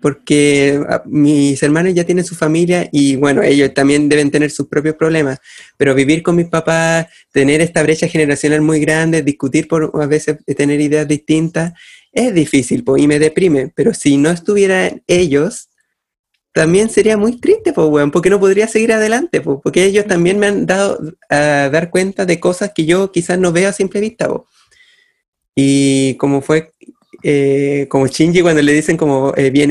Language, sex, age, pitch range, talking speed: Spanish, male, 30-49, 145-180 Hz, 180 wpm